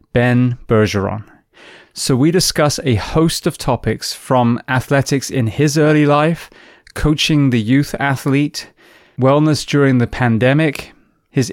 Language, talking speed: English, 125 wpm